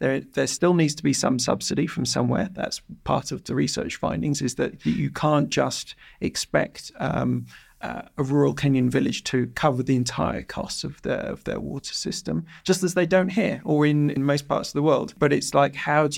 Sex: male